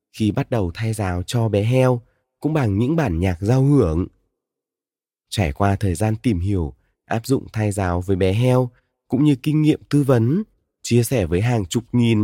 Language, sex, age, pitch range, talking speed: Vietnamese, male, 20-39, 100-135 Hz, 195 wpm